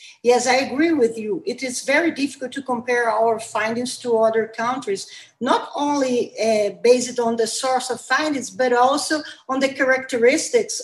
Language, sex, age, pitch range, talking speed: English, female, 40-59, 230-275 Hz, 165 wpm